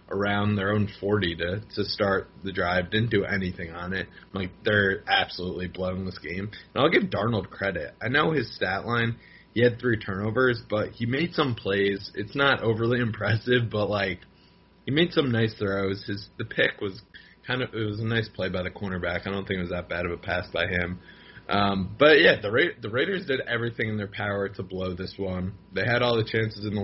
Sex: male